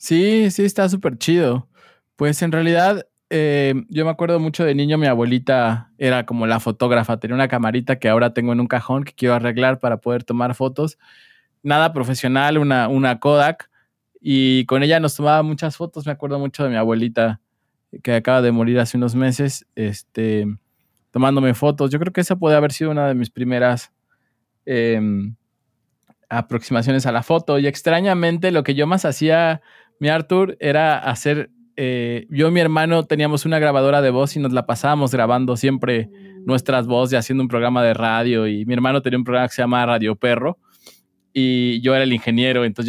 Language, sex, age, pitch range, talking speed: Spanish, male, 20-39, 120-150 Hz, 185 wpm